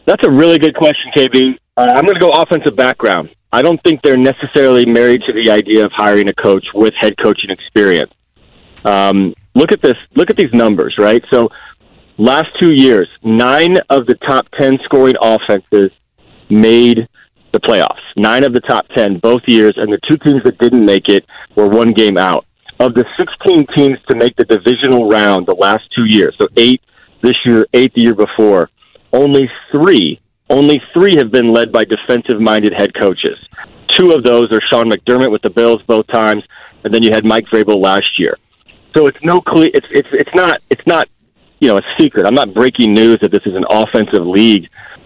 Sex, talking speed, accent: male, 195 wpm, American